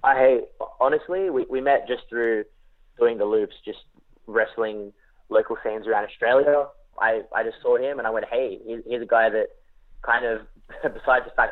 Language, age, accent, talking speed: English, 20-39, Australian, 180 wpm